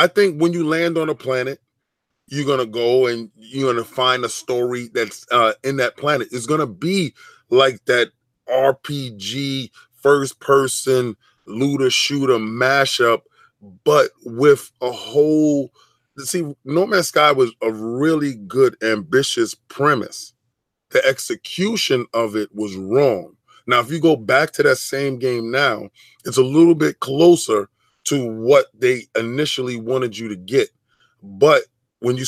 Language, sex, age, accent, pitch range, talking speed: English, male, 30-49, American, 120-165 Hz, 150 wpm